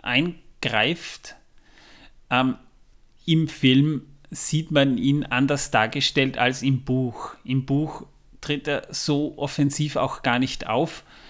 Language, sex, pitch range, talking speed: German, male, 125-145 Hz, 115 wpm